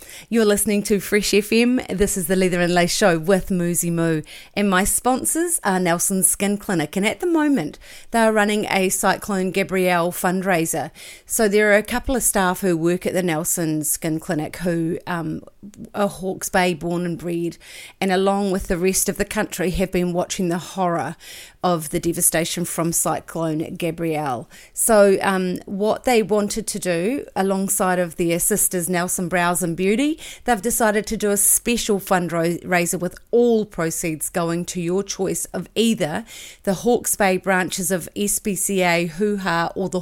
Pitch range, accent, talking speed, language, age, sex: 175-205 Hz, Australian, 170 wpm, English, 40-59, female